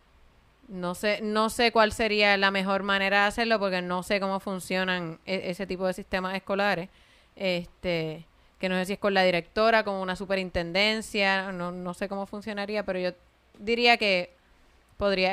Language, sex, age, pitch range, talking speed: Spanish, female, 20-39, 180-220 Hz, 170 wpm